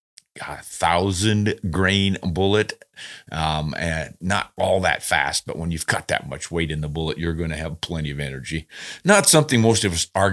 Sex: male